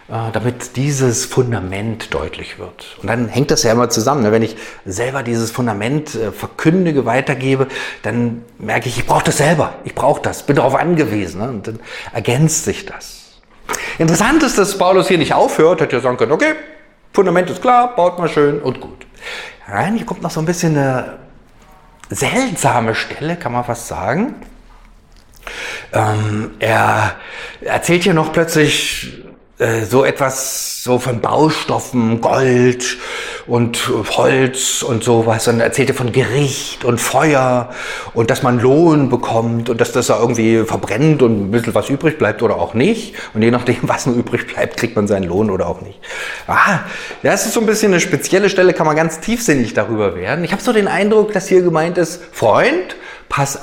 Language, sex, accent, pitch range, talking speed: German, male, German, 115-170 Hz, 170 wpm